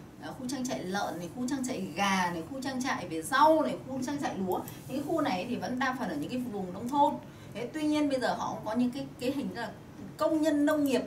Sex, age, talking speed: female, 20-39, 275 wpm